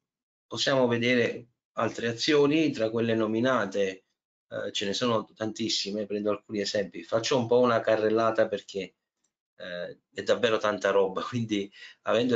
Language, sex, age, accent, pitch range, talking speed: Italian, male, 30-49, native, 100-115 Hz, 135 wpm